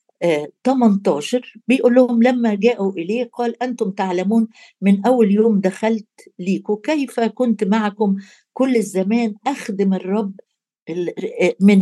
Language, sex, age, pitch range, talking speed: Arabic, female, 60-79, 190-240 Hz, 110 wpm